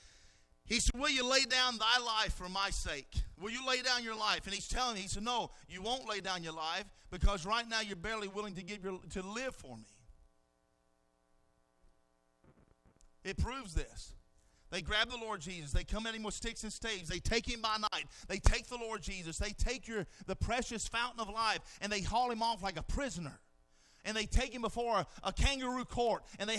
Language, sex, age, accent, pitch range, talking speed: English, male, 40-59, American, 205-270 Hz, 215 wpm